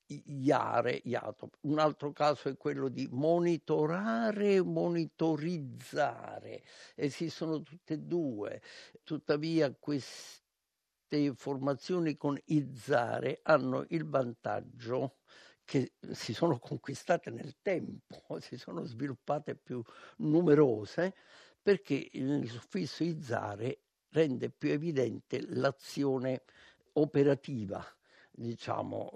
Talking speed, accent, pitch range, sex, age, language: 90 wpm, native, 115-155 Hz, male, 60-79, Italian